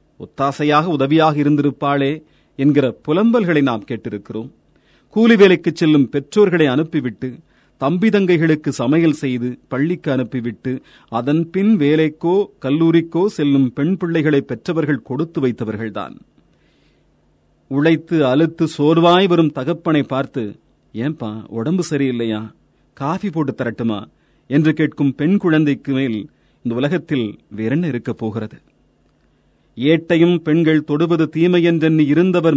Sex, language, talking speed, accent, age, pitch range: male, Tamil, 100 wpm, native, 40-59, 125-170 Hz